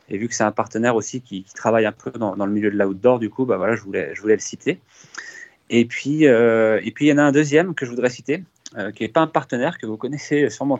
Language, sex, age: French, male, 20-39